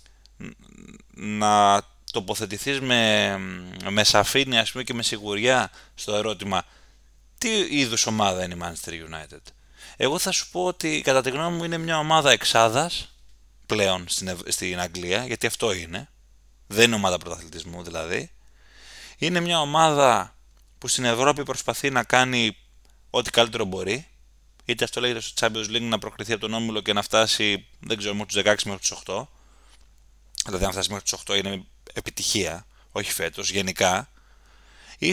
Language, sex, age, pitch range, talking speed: Greek, male, 20-39, 95-130 Hz, 150 wpm